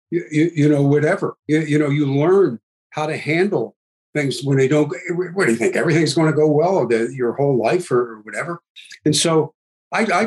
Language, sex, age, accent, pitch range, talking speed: English, male, 60-79, American, 135-170 Hz, 215 wpm